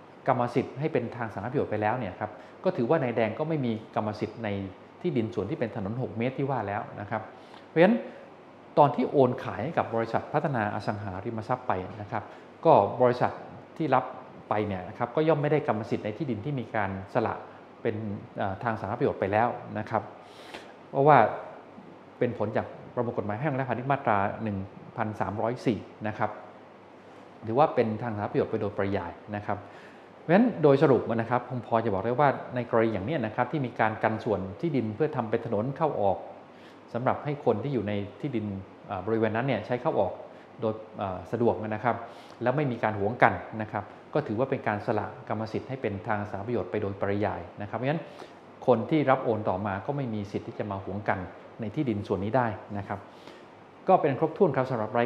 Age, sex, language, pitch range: 20-39, male, Thai, 105-125 Hz